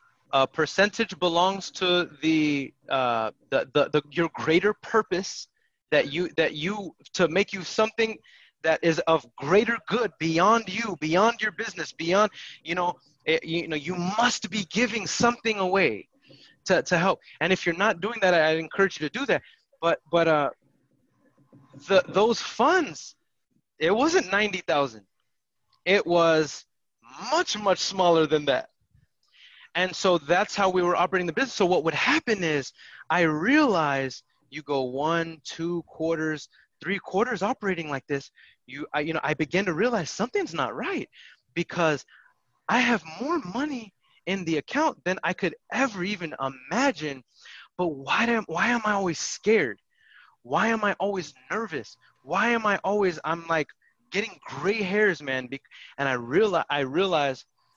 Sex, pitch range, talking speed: male, 155-210 Hz, 160 wpm